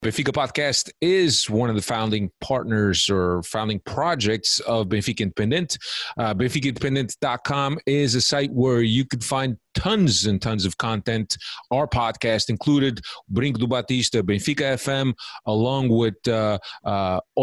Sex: male